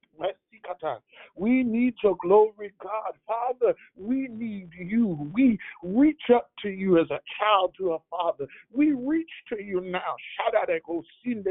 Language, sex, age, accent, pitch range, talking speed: English, male, 60-79, American, 155-220 Hz, 145 wpm